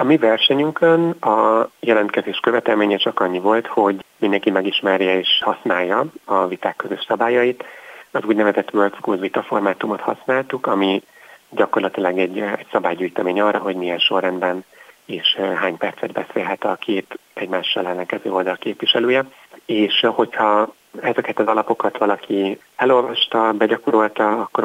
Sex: male